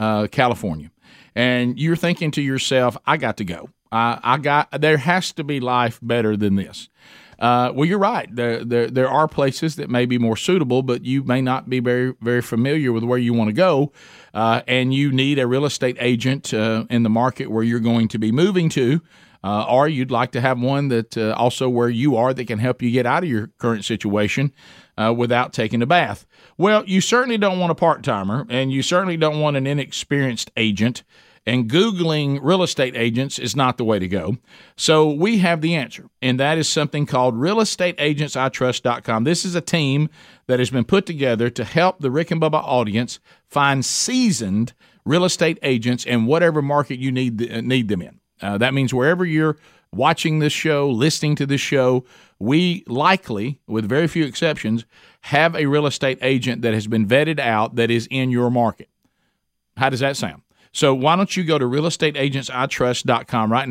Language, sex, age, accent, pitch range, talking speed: English, male, 40-59, American, 115-155 Hz, 195 wpm